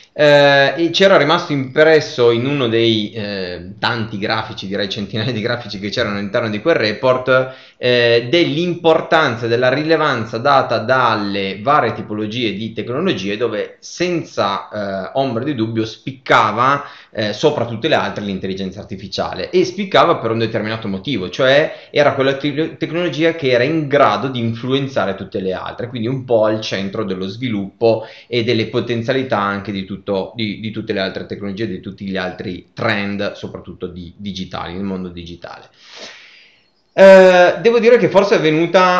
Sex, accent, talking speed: male, native, 155 wpm